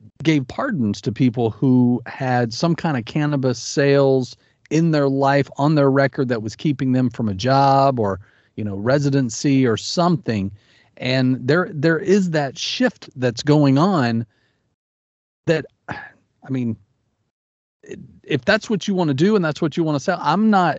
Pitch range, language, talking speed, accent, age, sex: 120-160 Hz, English, 165 wpm, American, 40-59, male